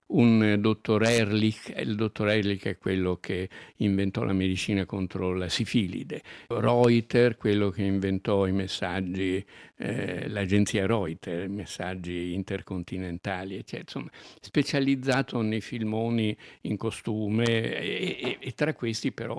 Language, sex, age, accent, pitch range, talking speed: Italian, male, 60-79, native, 95-115 Hz, 120 wpm